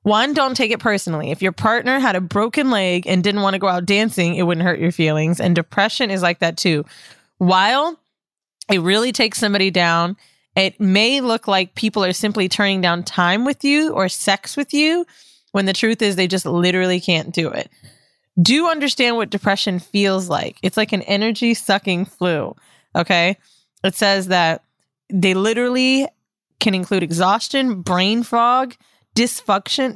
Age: 20-39